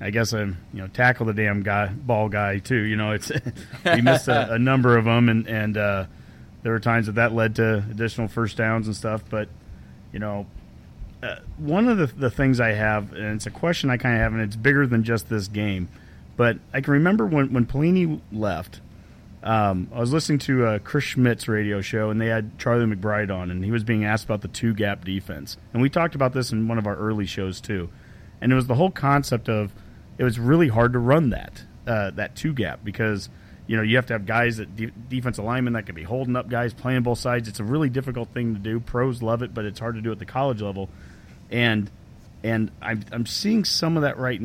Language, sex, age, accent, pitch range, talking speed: English, male, 30-49, American, 105-125 Hz, 235 wpm